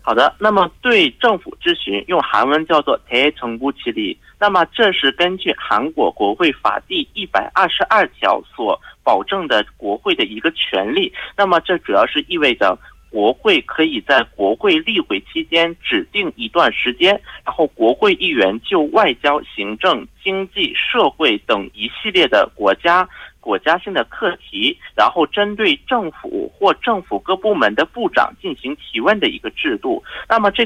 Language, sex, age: Korean, male, 50-69